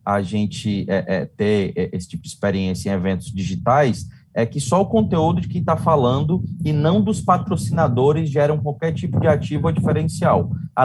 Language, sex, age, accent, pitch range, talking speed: English, male, 20-39, Brazilian, 120-160 Hz, 185 wpm